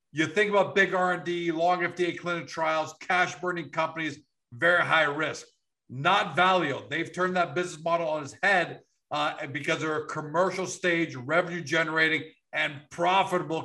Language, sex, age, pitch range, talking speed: English, male, 50-69, 160-185 Hz, 140 wpm